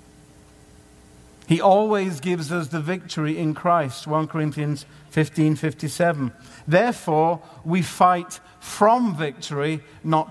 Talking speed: 105 wpm